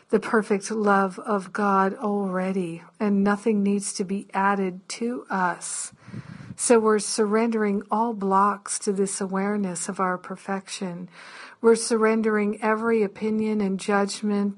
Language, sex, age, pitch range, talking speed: English, female, 50-69, 195-215 Hz, 130 wpm